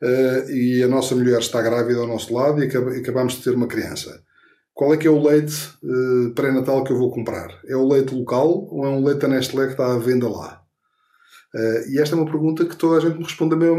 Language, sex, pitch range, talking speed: Portuguese, male, 125-150 Hz, 250 wpm